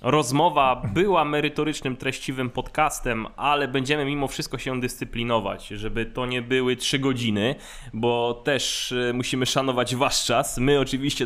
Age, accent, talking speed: 20-39, native, 135 wpm